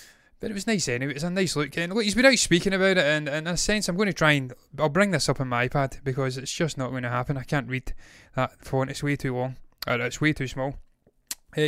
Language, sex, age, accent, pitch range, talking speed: English, male, 20-39, British, 130-155 Hz, 295 wpm